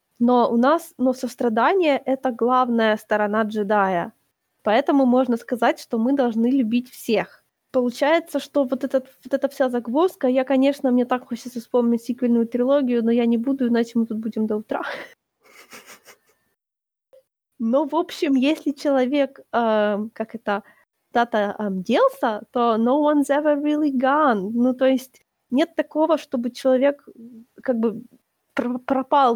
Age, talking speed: 20-39, 140 wpm